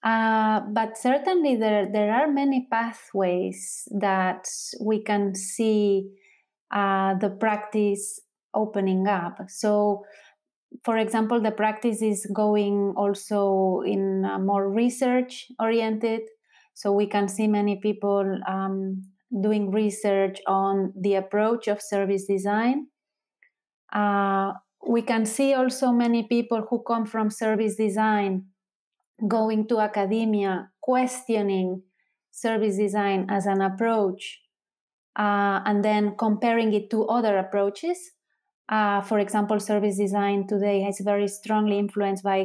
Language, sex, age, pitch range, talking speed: Finnish, female, 30-49, 195-225 Hz, 120 wpm